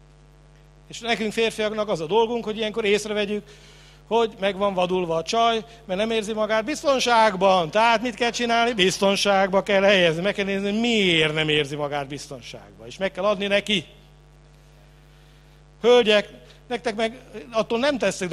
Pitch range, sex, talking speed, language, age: 155-210 Hz, male, 145 wpm, English, 60-79